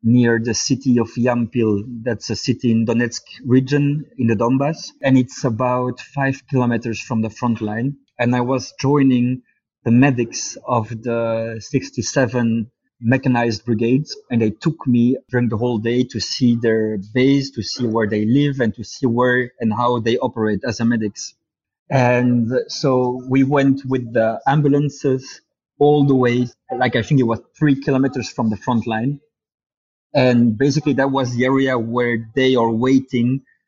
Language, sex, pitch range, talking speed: English, male, 115-135 Hz, 165 wpm